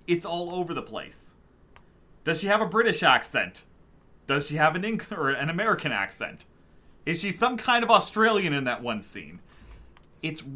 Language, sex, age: English, male, 30-49